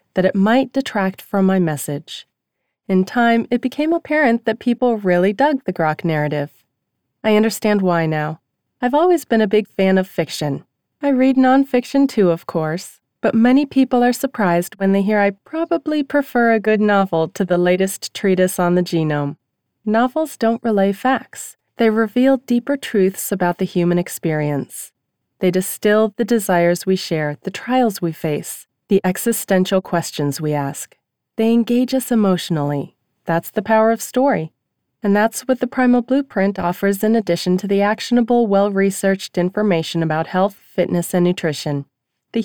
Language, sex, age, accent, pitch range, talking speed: English, female, 30-49, American, 175-245 Hz, 160 wpm